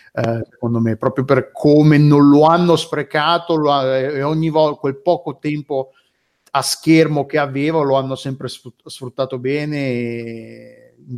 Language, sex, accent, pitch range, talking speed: Italian, male, native, 130-155 Hz, 135 wpm